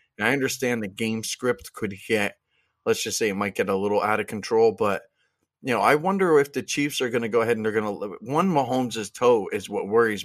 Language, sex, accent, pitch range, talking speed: English, male, American, 100-125 Hz, 245 wpm